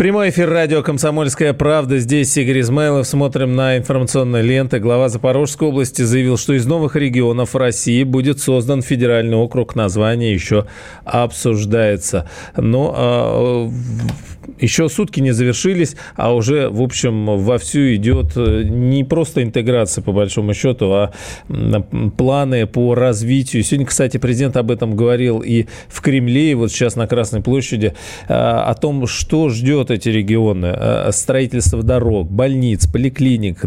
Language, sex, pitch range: Russian, male, 105-130 Hz